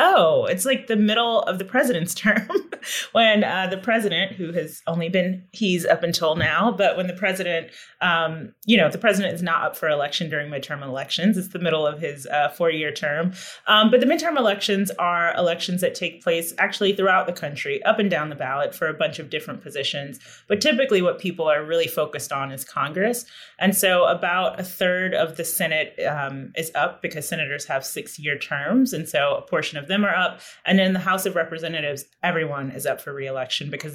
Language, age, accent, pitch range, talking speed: English, 30-49, American, 145-195 Hz, 210 wpm